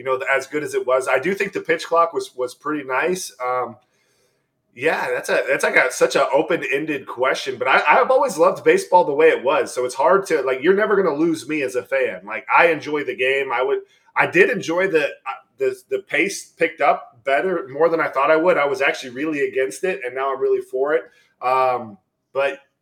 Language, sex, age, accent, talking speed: English, male, 20-39, American, 230 wpm